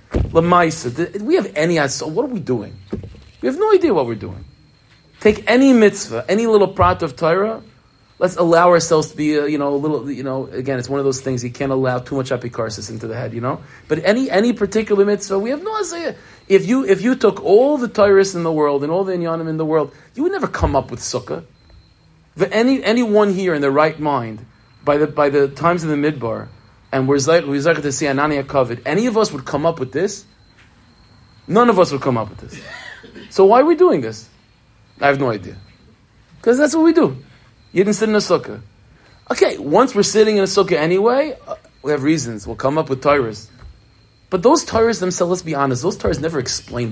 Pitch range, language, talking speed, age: 125-205 Hz, English, 230 wpm, 40-59